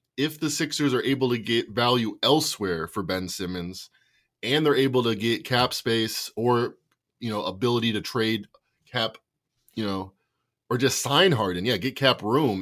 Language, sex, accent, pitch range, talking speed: English, male, American, 110-130 Hz, 170 wpm